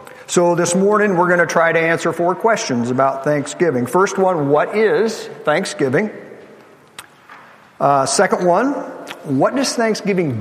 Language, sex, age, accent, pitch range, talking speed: English, male, 50-69, American, 145-190 Hz, 140 wpm